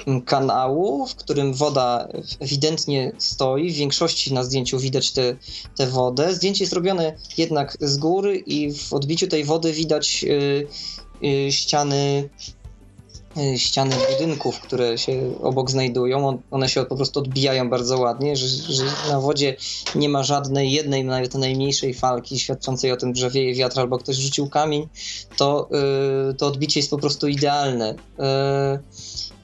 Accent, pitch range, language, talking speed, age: native, 130-155 Hz, Polish, 150 wpm, 20-39